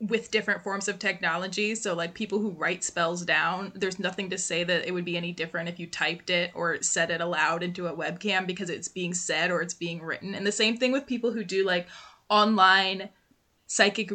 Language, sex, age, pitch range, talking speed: English, female, 20-39, 185-225 Hz, 220 wpm